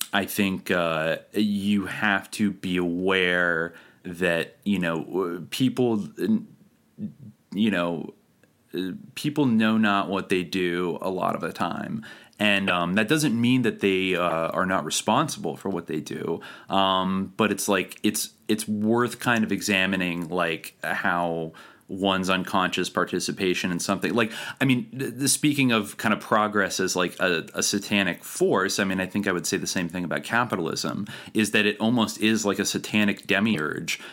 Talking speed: 165 wpm